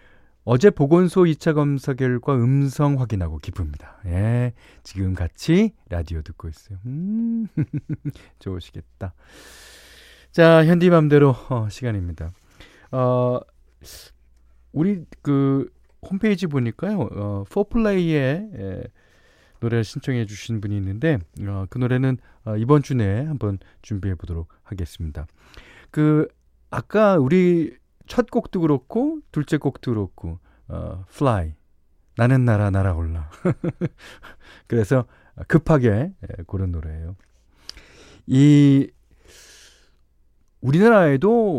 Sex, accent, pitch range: male, native, 90-150 Hz